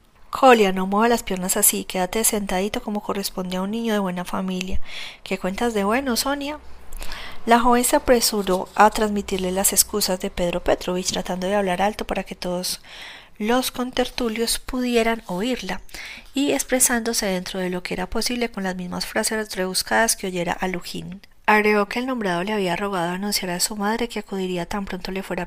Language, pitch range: Spanish, 185-225 Hz